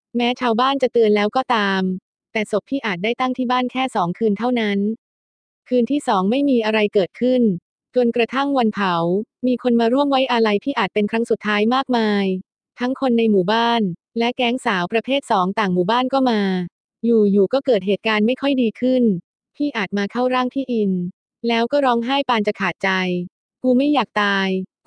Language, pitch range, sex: Thai, 200-245 Hz, female